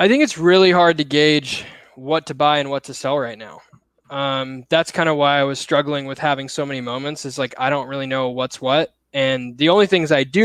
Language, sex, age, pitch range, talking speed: English, male, 20-39, 135-165 Hz, 245 wpm